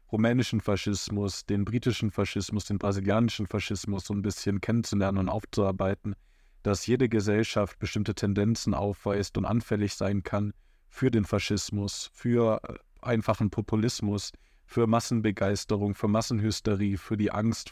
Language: German